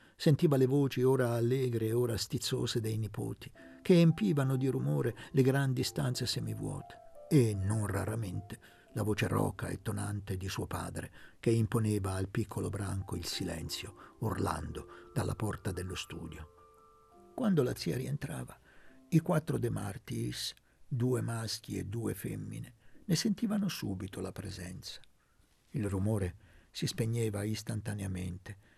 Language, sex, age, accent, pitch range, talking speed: Italian, male, 60-79, native, 100-145 Hz, 135 wpm